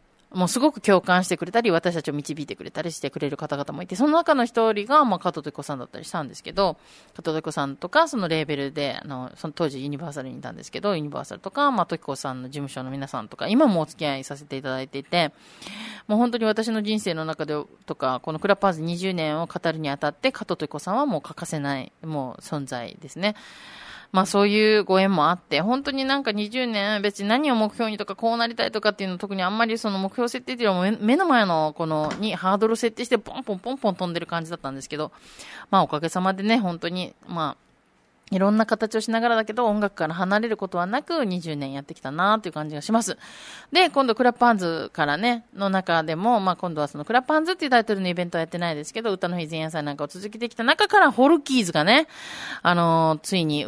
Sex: female